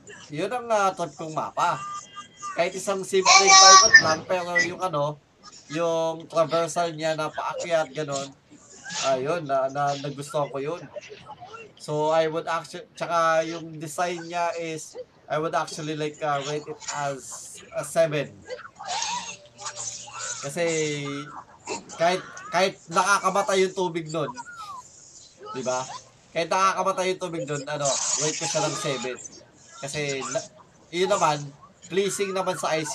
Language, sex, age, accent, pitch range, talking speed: Filipino, male, 20-39, native, 150-190 Hz, 125 wpm